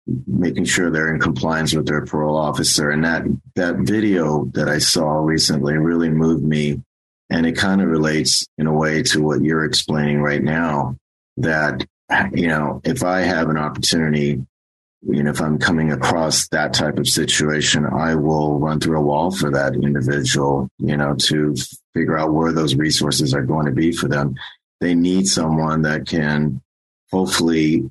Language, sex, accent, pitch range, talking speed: English, male, American, 70-80 Hz, 175 wpm